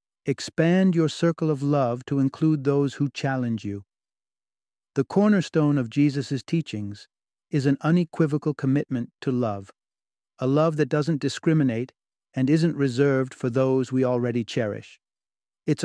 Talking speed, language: 135 wpm, English